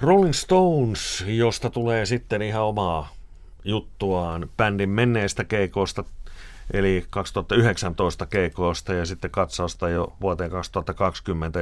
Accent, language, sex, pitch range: native, Finnish, male, 85-105 Hz